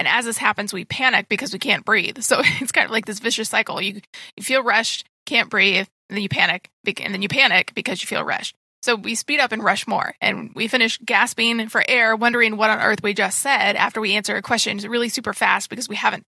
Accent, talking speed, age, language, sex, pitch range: American, 245 wpm, 20-39, English, female, 210-250 Hz